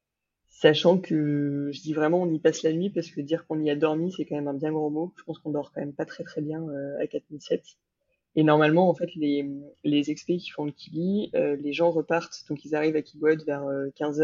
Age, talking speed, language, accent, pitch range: 20-39, 250 wpm, French, French, 145-165 Hz